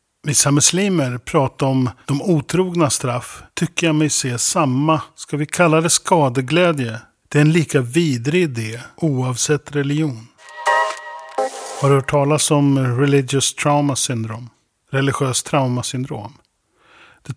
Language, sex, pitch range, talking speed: Swedish, male, 130-155 Hz, 125 wpm